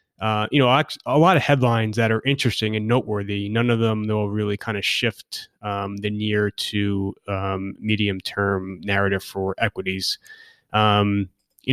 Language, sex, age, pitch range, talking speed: English, male, 20-39, 105-120 Hz, 165 wpm